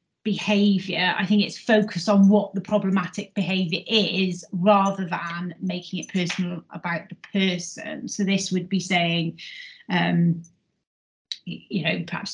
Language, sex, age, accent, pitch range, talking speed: English, female, 30-49, British, 180-215 Hz, 135 wpm